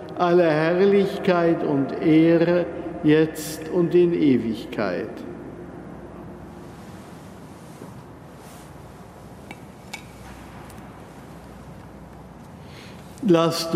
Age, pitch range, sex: 60-79, 145-170 Hz, male